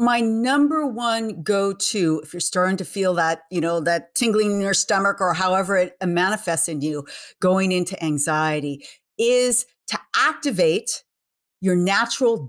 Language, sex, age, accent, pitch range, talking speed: English, female, 40-59, American, 175-230 Hz, 150 wpm